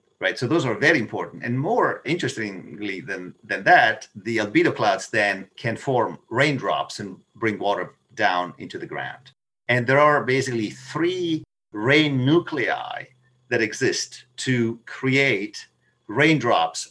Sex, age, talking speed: male, 50-69, 135 wpm